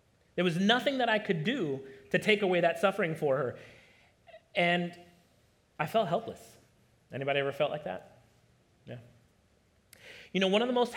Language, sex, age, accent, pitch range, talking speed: English, male, 30-49, American, 155-205 Hz, 165 wpm